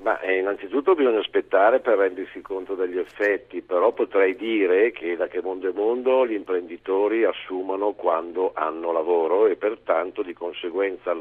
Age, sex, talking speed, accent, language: 50-69, male, 155 wpm, native, Italian